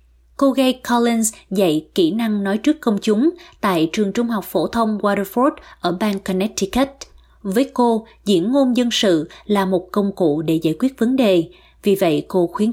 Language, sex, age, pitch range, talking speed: Vietnamese, female, 20-39, 175-230 Hz, 185 wpm